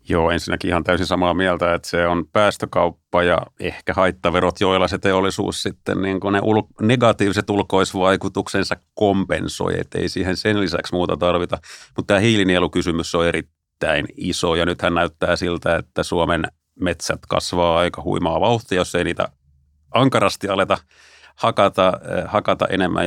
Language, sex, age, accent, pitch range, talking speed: Finnish, male, 30-49, native, 85-100 Hz, 140 wpm